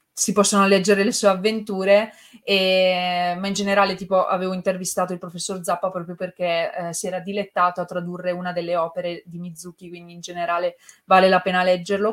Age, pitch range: 20-39, 180-205 Hz